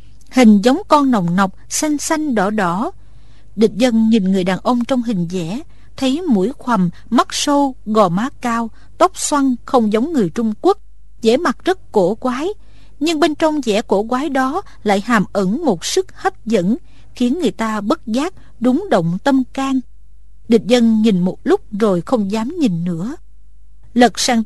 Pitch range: 220-285 Hz